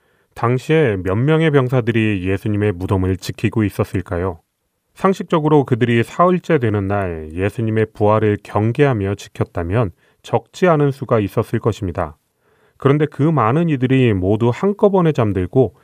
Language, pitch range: Korean, 105-140 Hz